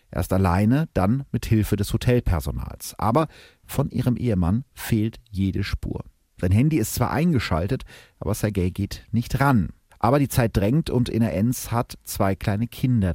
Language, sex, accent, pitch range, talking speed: German, male, German, 95-125 Hz, 160 wpm